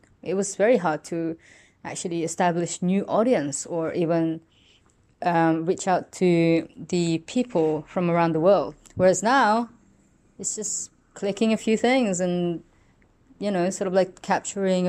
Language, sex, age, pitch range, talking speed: English, female, 20-39, 160-190 Hz, 145 wpm